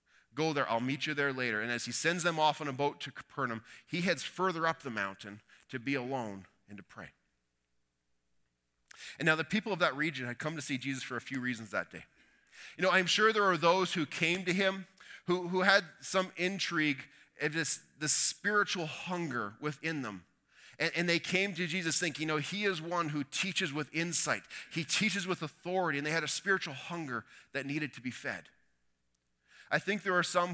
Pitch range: 120-165 Hz